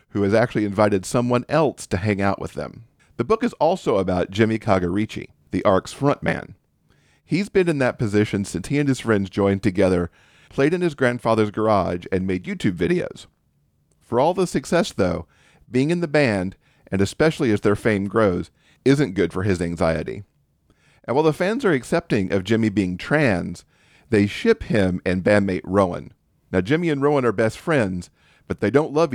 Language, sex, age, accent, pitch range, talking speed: English, male, 40-59, American, 100-140 Hz, 185 wpm